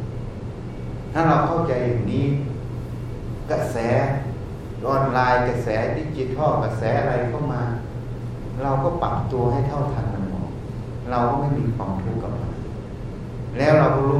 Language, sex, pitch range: Thai, male, 110-130 Hz